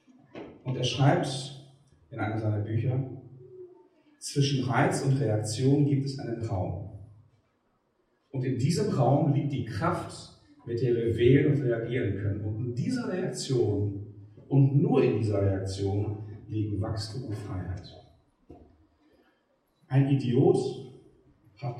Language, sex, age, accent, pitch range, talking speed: German, male, 40-59, German, 115-155 Hz, 125 wpm